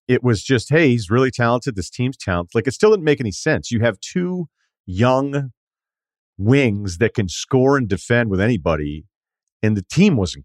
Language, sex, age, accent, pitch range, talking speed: English, male, 40-59, American, 95-125 Hz, 190 wpm